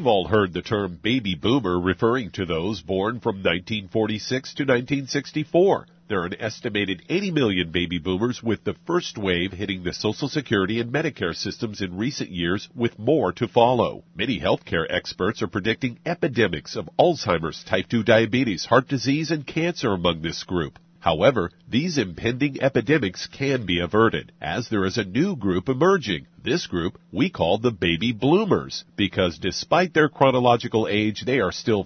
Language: English